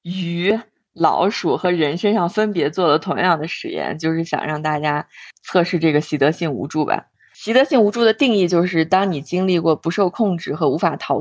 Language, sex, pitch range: Chinese, female, 160-200 Hz